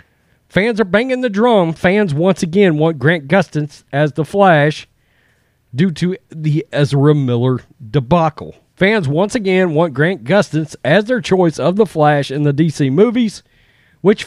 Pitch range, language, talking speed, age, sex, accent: 150-195 Hz, English, 155 wpm, 40-59, male, American